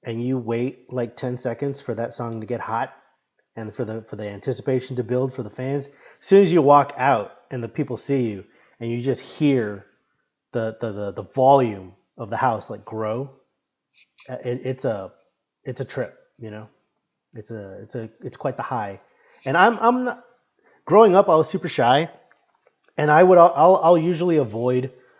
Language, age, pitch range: English, 30-49, 115-155 Hz